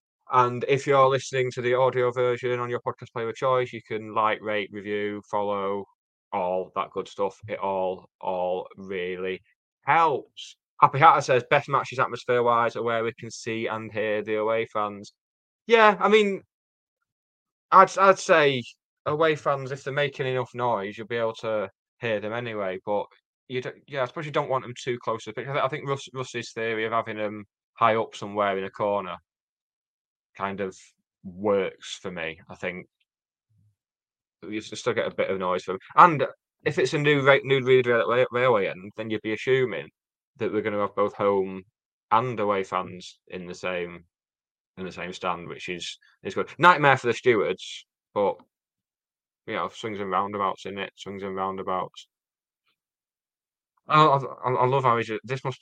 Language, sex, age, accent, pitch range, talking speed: English, male, 10-29, British, 100-130 Hz, 180 wpm